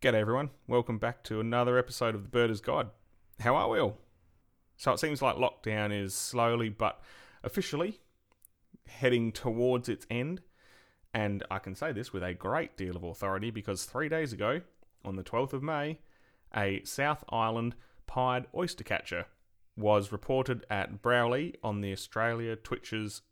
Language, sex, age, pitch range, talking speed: English, male, 30-49, 100-125 Hz, 160 wpm